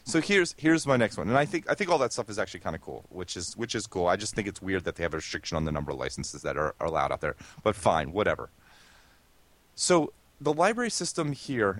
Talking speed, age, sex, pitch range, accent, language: 270 wpm, 30-49, male, 100-150 Hz, American, English